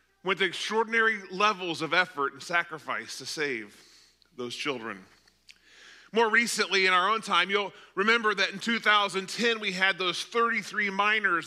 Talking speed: 145 wpm